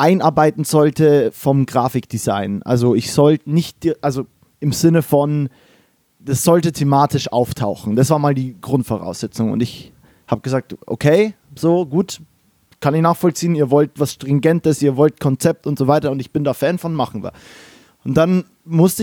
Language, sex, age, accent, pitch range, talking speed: German, male, 20-39, German, 135-165 Hz, 165 wpm